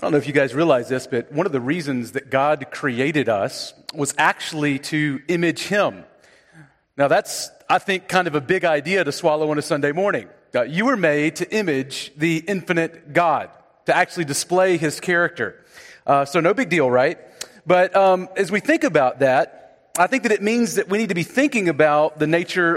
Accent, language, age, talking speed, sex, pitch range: American, English, 40-59, 205 wpm, male, 150-185 Hz